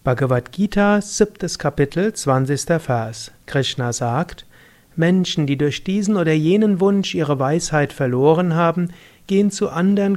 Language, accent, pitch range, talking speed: German, German, 140-180 Hz, 125 wpm